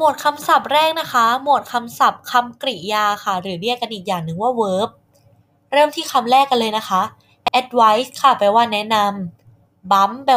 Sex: female